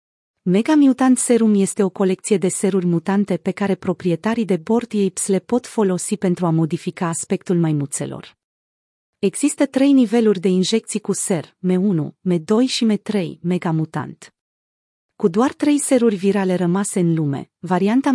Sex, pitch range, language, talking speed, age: female, 180-225 Hz, Romanian, 145 wpm, 30-49